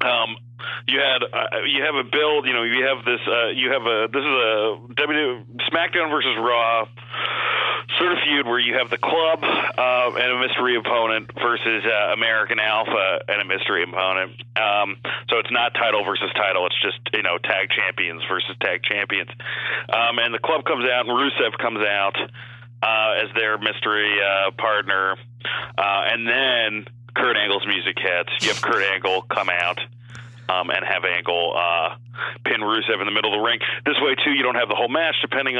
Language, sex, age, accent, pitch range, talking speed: English, male, 30-49, American, 110-130 Hz, 190 wpm